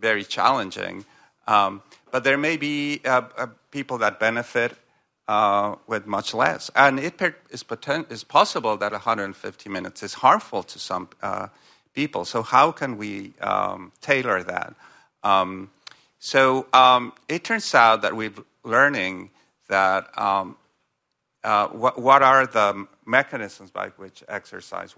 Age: 50-69